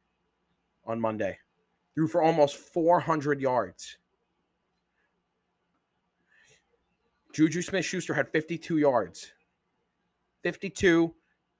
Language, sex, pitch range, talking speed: English, male, 120-145 Hz, 65 wpm